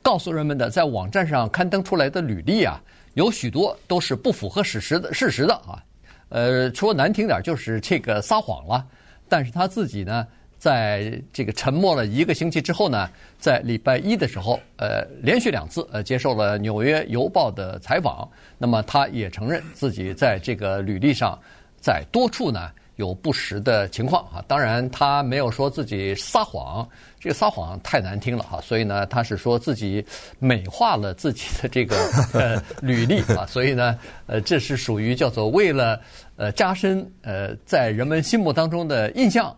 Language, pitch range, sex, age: Chinese, 105-140 Hz, male, 50-69